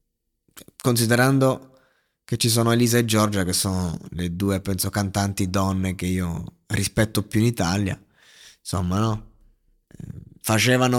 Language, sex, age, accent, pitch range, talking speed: Italian, male, 20-39, native, 100-120 Hz, 125 wpm